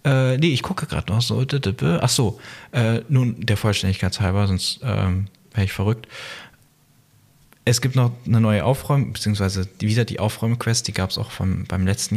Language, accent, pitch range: German, German, 100-125 Hz